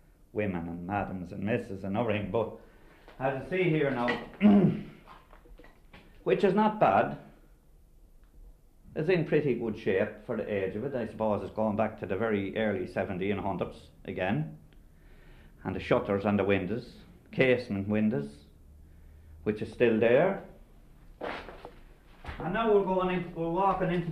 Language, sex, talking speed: English, male, 150 wpm